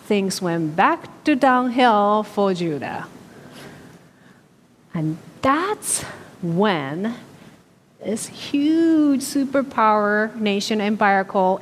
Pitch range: 195-275 Hz